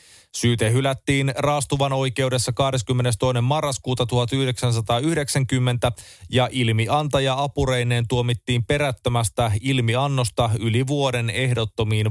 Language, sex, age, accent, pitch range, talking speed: Finnish, male, 30-49, native, 115-140 Hz, 80 wpm